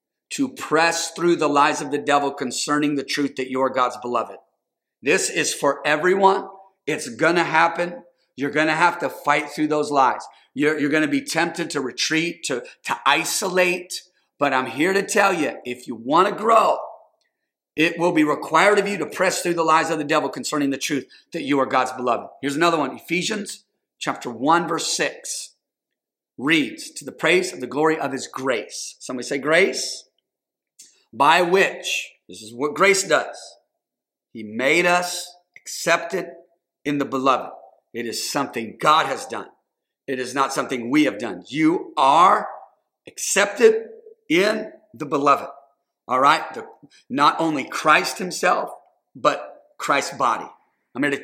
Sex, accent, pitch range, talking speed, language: male, American, 140-185 Hz, 160 wpm, English